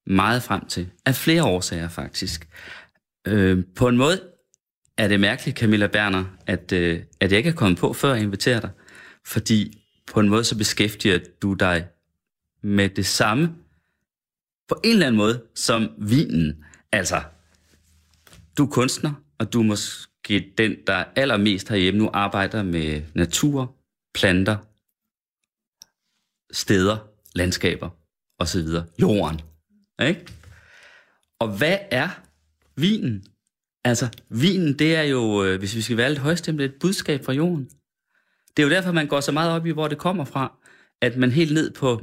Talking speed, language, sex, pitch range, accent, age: 155 wpm, Danish, male, 95-140 Hz, native, 30-49